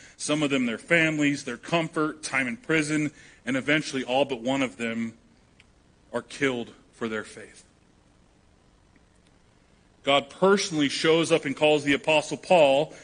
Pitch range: 115-155 Hz